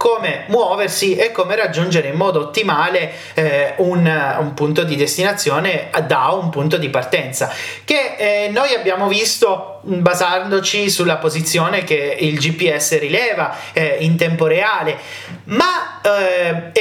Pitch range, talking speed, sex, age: 150-205 Hz, 130 wpm, male, 30-49